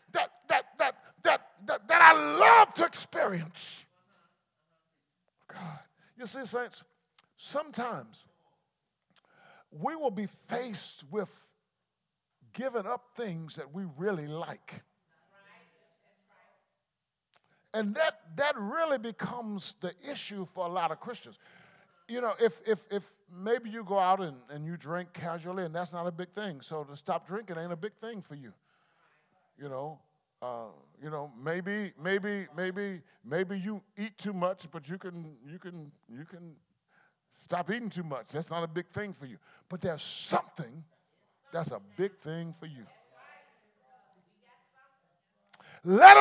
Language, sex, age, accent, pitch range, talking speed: English, male, 50-69, American, 170-230 Hz, 145 wpm